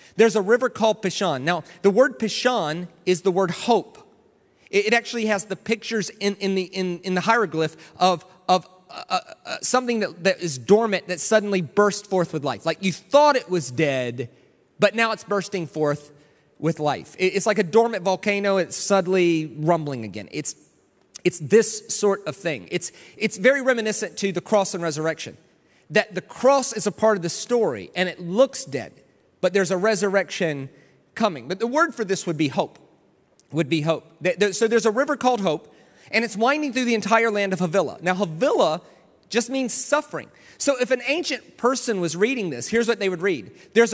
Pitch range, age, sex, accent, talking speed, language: 175-230 Hz, 30-49, male, American, 195 wpm, English